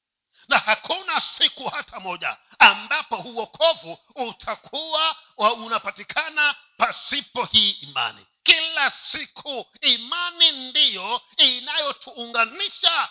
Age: 50-69